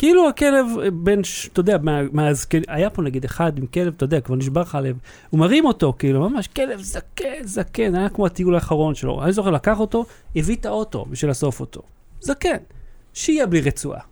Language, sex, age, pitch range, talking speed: Hebrew, male, 40-59, 155-245 Hz, 180 wpm